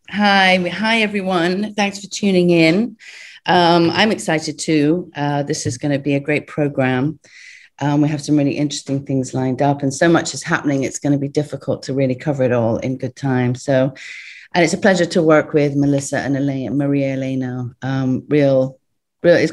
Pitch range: 140-170 Hz